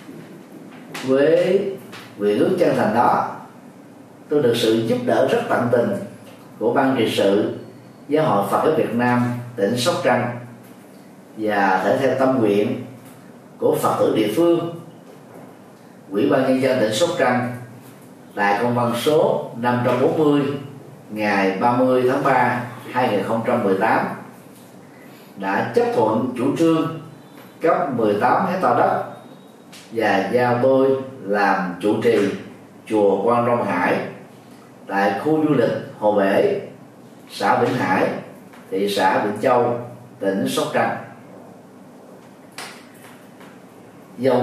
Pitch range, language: 110-140 Hz, Vietnamese